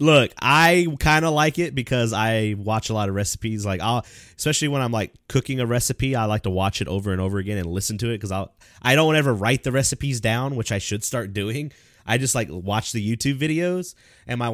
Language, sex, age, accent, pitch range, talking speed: English, male, 20-39, American, 100-135 Hz, 240 wpm